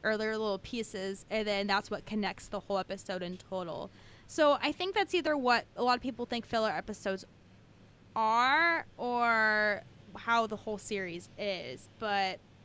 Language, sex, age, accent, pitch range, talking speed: English, female, 20-39, American, 190-215 Hz, 160 wpm